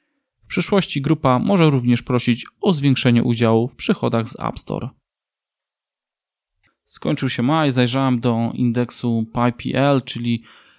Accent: native